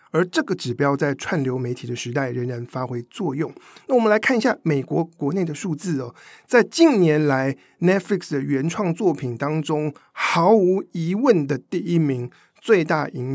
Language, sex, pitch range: Chinese, male, 135-190 Hz